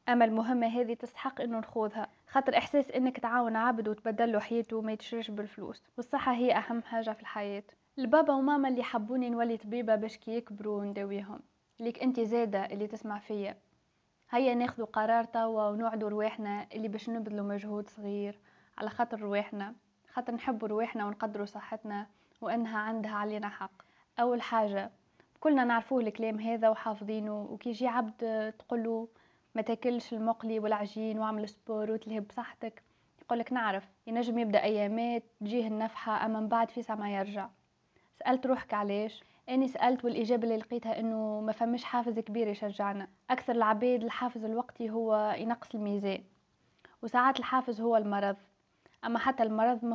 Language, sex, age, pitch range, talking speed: Arabic, female, 10-29, 215-240 Hz, 145 wpm